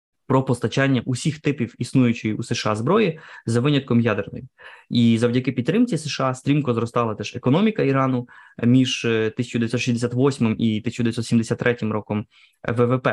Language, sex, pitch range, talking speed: Ukrainian, male, 115-130 Hz, 120 wpm